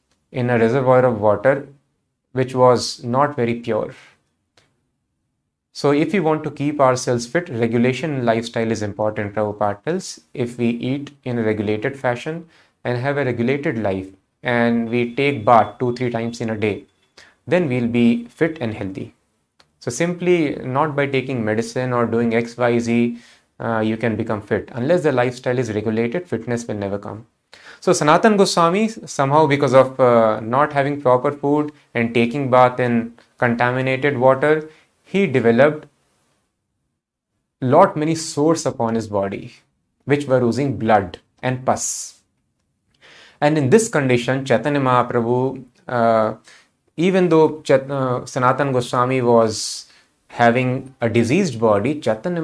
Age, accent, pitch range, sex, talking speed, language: 30-49, Indian, 115-145 Hz, male, 140 wpm, English